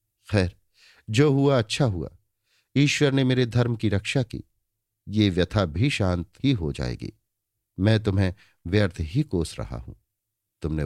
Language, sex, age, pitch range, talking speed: Hindi, male, 50-69, 95-120 Hz, 125 wpm